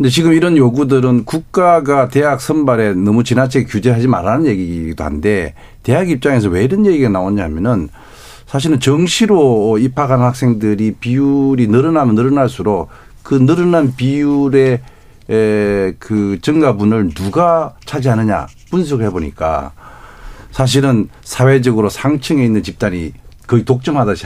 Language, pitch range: Korean, 105-140 Hz